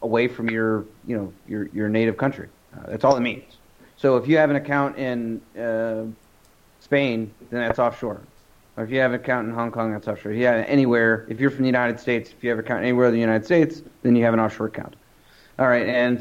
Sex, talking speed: male, 235 wpm